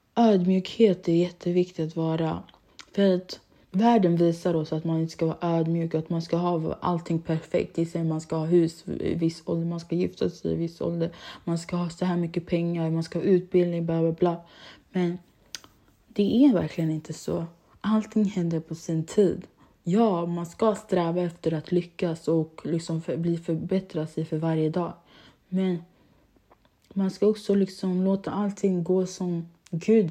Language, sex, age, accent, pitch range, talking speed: Swedish, female, 20-39, native, 165-185 Hz, 175 wpm